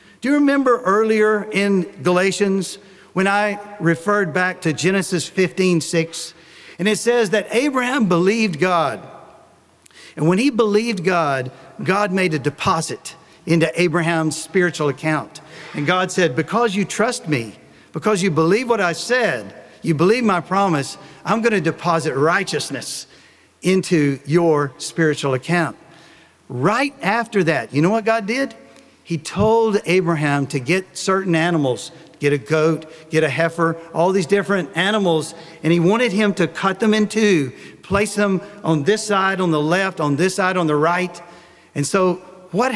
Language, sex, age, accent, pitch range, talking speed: English, male, 50-69, American, 160-205 Hz, 155 wpm